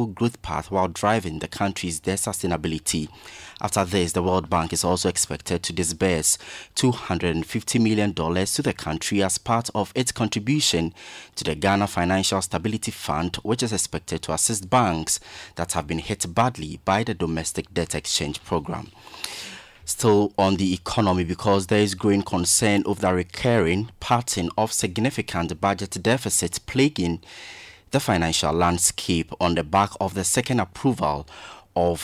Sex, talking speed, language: male, 150 wpm, English